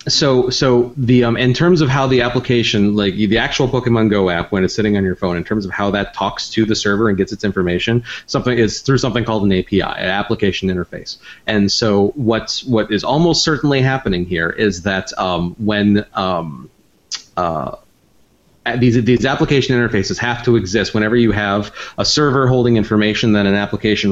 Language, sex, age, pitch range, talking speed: English, male, 30-49, 100-120 Hz, 190 wpm